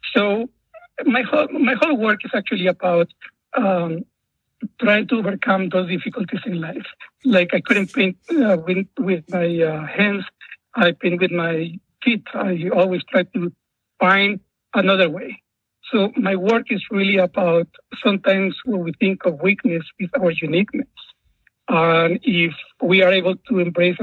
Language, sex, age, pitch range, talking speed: English, male, 60-79, 175-215 Hz, 155 wpm